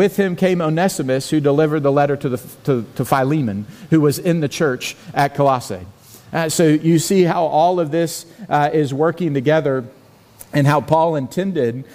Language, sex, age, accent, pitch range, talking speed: English, male, 40-59, American, 140-175 Hz, 170 wpm